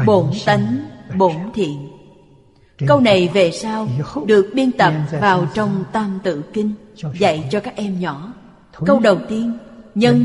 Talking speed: 145 wpm